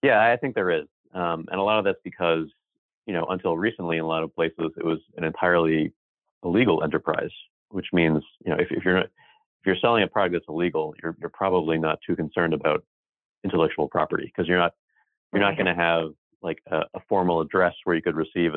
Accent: American